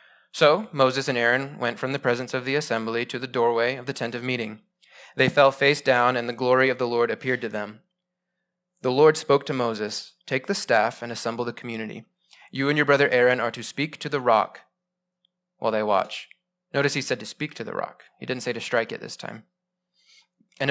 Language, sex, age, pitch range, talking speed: English, male, 20-39, 120-165 Hz, 215 wpm